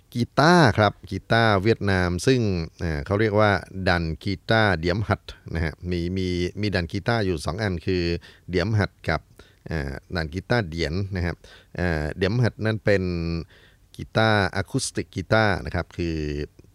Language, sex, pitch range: Thai, male, 85-105 Hz